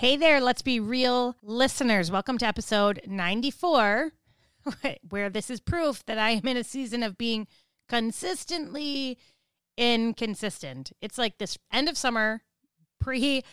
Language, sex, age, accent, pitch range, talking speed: English, female, 30-49, American, 195-255 Hz, 135 wpm